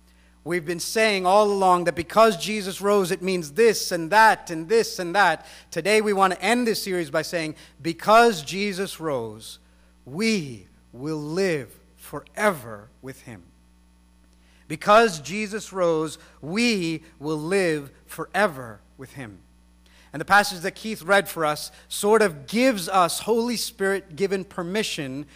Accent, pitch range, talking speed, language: American, 140-200 Hz, 140 wpm, English